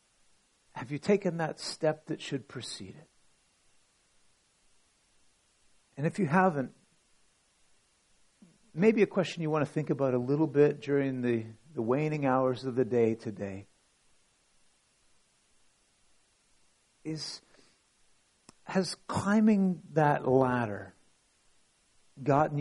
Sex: male